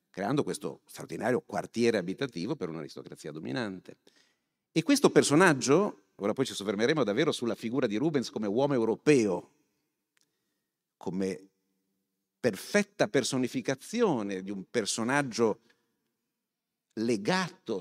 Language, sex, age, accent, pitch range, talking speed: Italian, male, 50-69, native, 120-185 Hz, 100 wpm